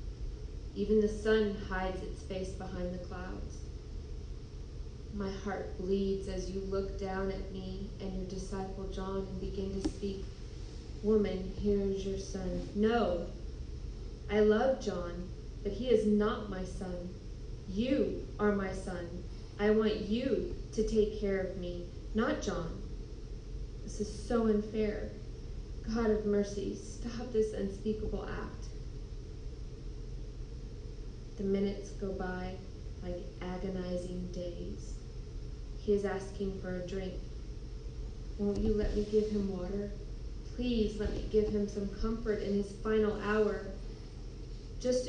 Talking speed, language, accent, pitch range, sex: 130 wpm, English, American, 180-215 Hz, female